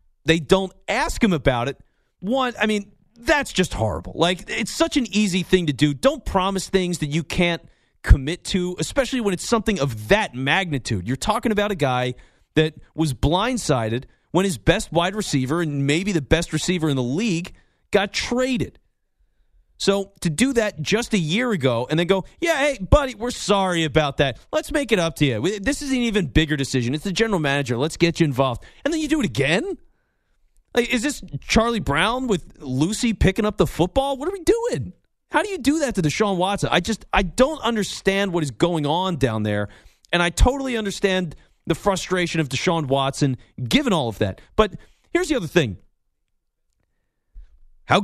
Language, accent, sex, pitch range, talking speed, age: English, American, male, 150-225 Hz, 190 wpm, 40-59